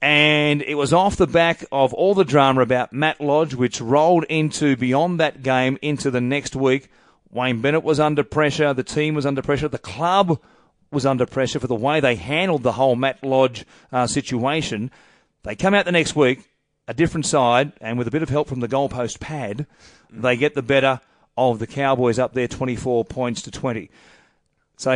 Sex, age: male, 40-59